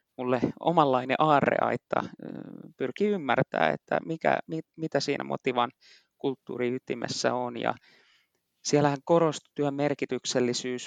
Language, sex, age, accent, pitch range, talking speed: Finnish, male, 20-39, native, 125-145 Hz, 95 wpm